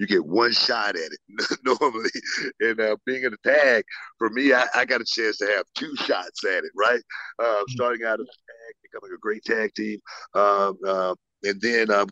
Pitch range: 95-115 Hz